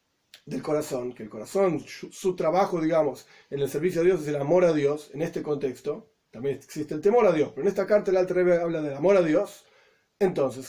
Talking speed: 225 wpm